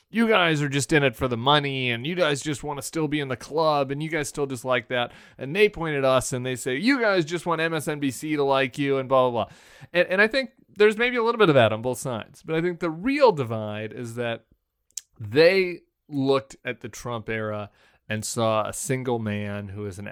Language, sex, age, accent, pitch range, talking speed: English, male, 30-49, American, 105-140 Hz, 250 wpm